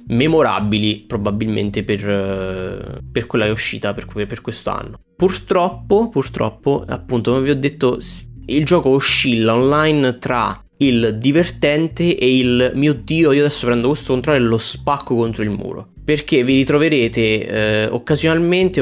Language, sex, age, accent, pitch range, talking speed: Italian, male, 20-39, native, 115-145 Hz, 145 wpm